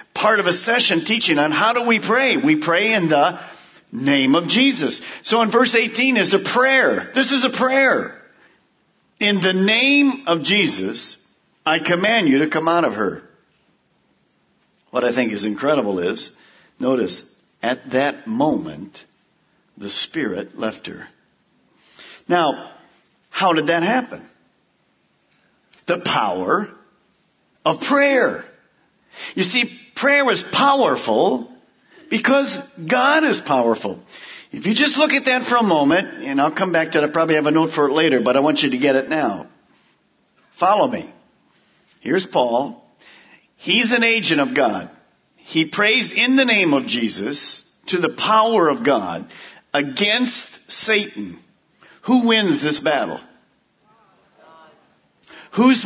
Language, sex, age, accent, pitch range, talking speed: English, male, 50-69, American, 165-260 Hz, 140 wpm